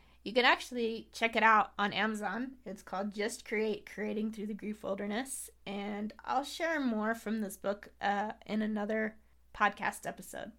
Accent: American